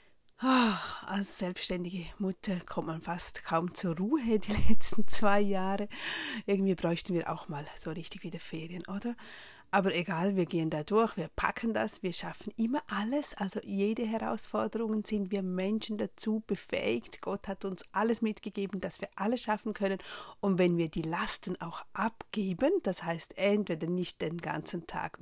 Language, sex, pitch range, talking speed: German, female, 175-215 Hz, 165 wpm